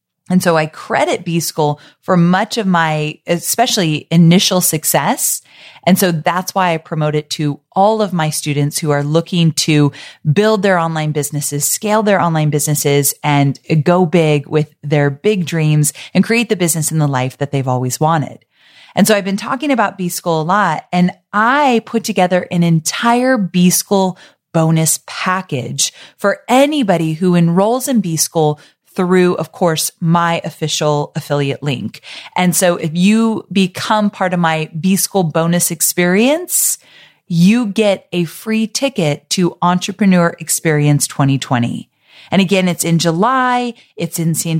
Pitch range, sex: 155-200 Hz, female